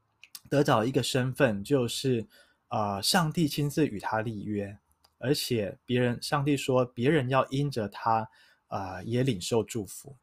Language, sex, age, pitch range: Chinese, male, 20-39, 110-150 Hz